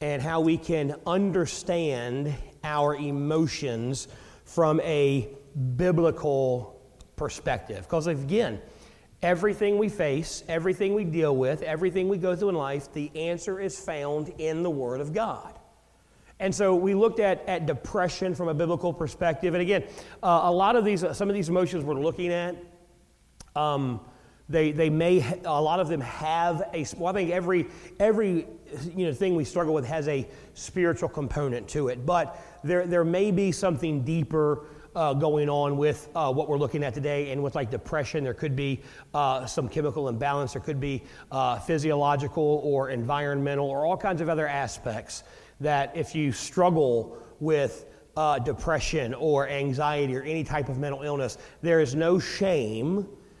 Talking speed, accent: 165 wpm, American